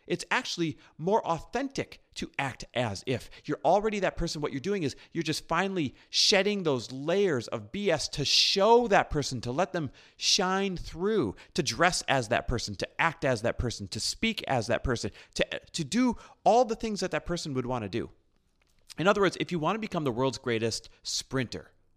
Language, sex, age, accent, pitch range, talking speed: English, male, 30-49, American, 125-190 Hz, 200 wpm